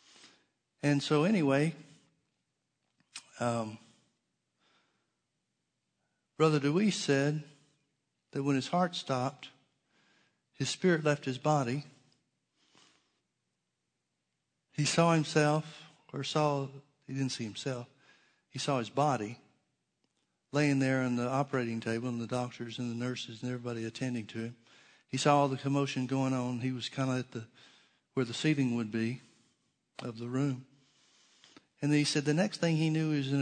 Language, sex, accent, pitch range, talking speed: English, male, American, 125-145 Hz, 145 wpm